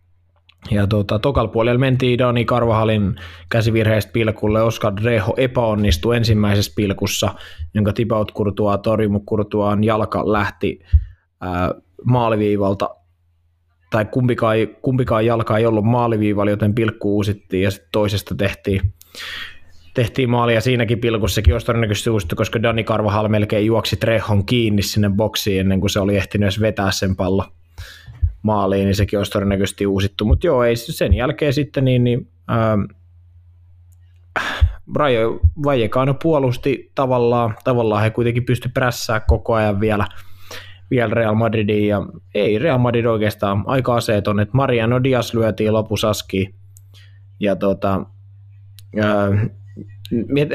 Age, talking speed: 20-39, 120 wpm